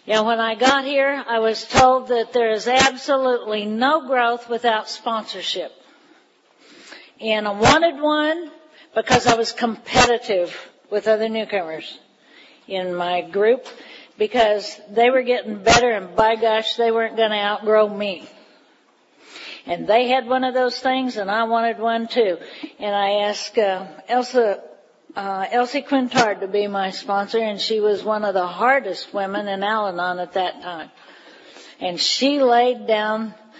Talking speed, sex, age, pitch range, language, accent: 150 wpm, female, 50-69, 210-240 Hz, English, American